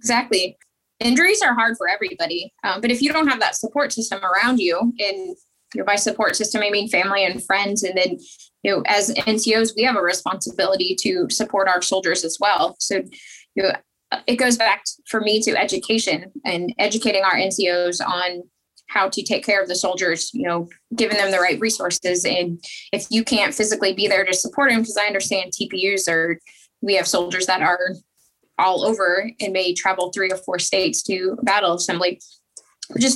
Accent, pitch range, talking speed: American, 185-230 Hz, 190 wpm